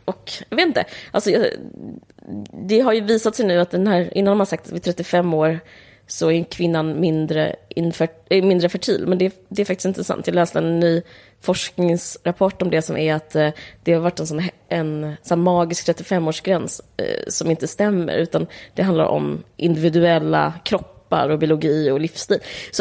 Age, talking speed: 20-39, 175 wpm